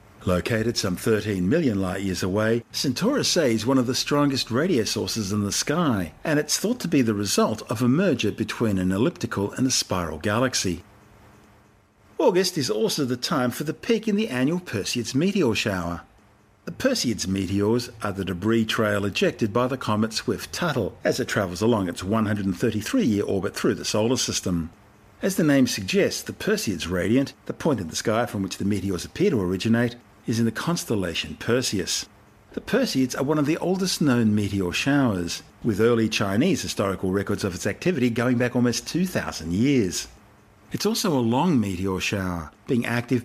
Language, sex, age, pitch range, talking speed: English, male, 50-69, 100-130 Hz, 180 wpm